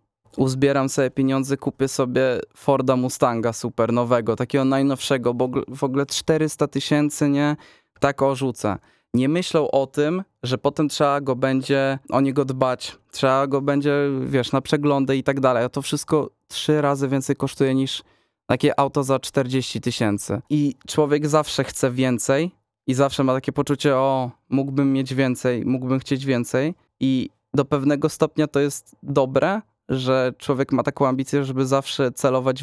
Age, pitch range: 20-39, 130-145 Hz